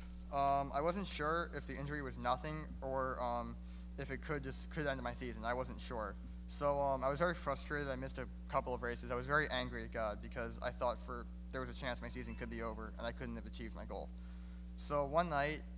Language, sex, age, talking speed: English, male, 20-39, 240 wpm